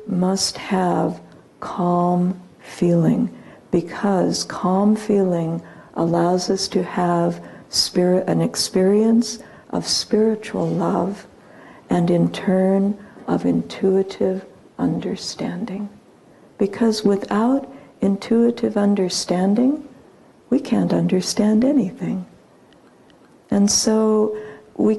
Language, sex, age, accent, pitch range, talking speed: English, female, 60-79, American, 180-220 Hz, 80 wpm